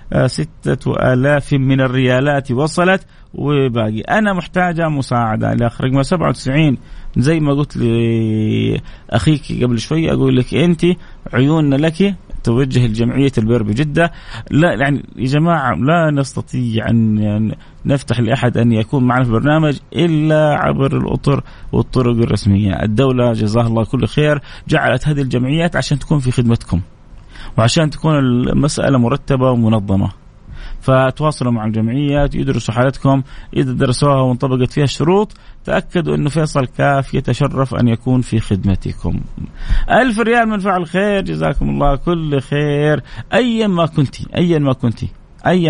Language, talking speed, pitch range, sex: Arabic, 130 wpm, 115-155 Hz, male